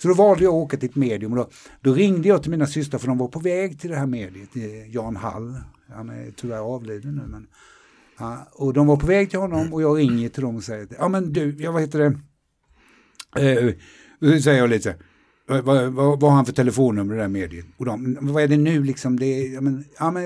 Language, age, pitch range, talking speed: Swedish, 60-79, 120-160 Hz, 240 wpm